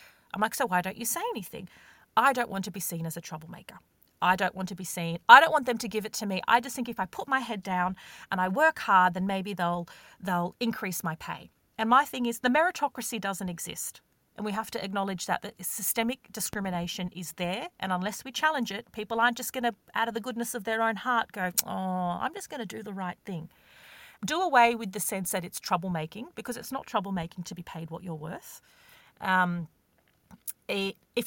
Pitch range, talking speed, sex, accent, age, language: 180-245 Hz, 230 wpm, female, Australian, 40-59, English